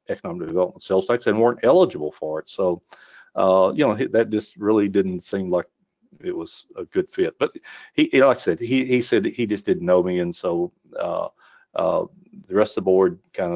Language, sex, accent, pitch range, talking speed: English, male, American, 90-130 Hz, 215 wpm